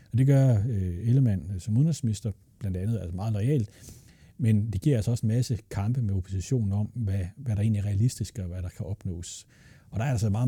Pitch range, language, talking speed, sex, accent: 95-115 Hz, Danish, 235 wpm, male, native